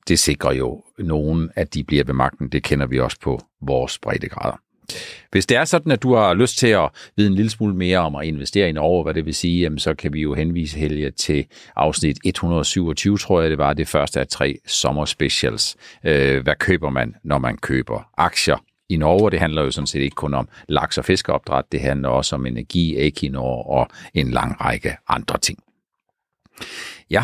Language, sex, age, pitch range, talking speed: Danish, male, 50-69, 80-105 Hz, 205 wpm